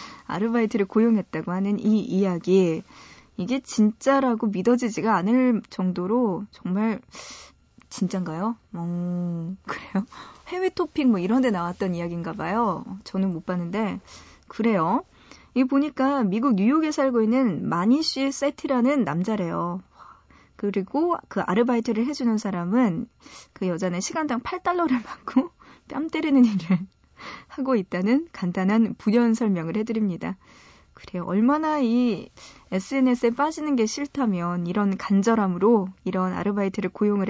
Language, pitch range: Korean, 190-255 Hz